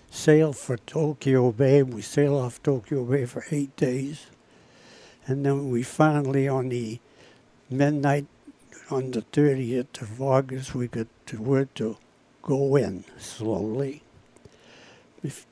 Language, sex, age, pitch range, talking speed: English, male, 60-79, 120-140 Hz, 130 wpm